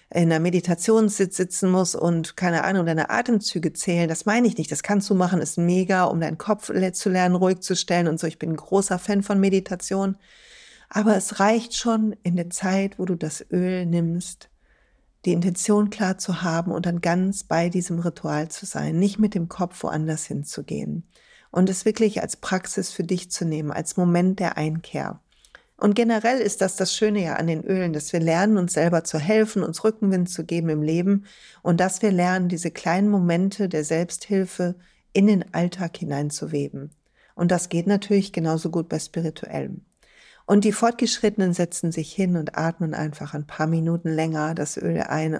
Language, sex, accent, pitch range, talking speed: German, female, German, 165-200 Hz, 190 wpm